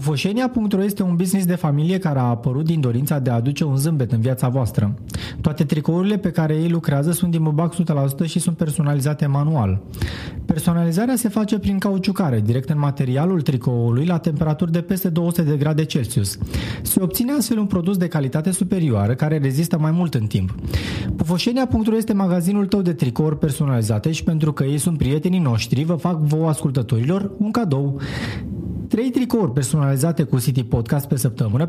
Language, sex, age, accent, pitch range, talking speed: Romanian, male, 30-49, native, 135-180 Hz, 175 wpm